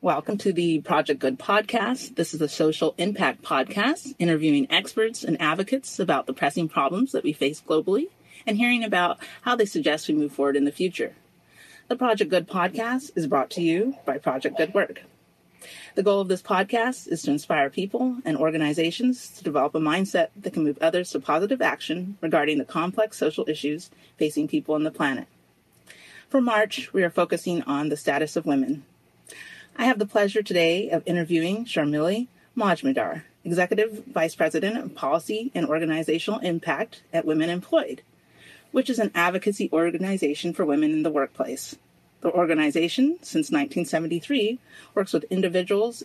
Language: English